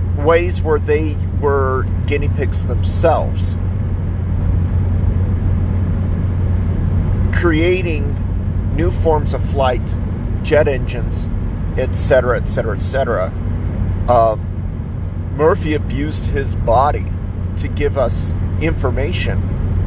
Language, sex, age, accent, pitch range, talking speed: English, male, 40-59, American, 90-100 Hz, 75 wpm